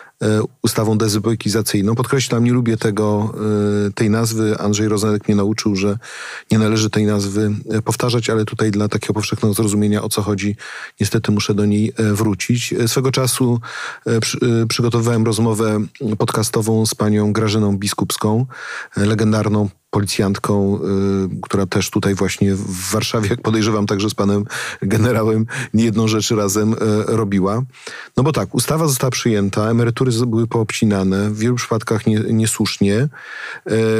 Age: 40-59